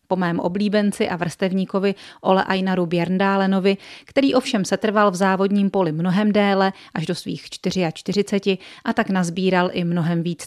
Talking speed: 150 wpm